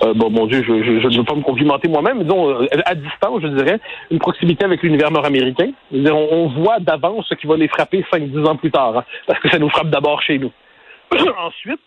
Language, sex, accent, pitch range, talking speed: French, male, French, 145-200 Hz, 245 wpm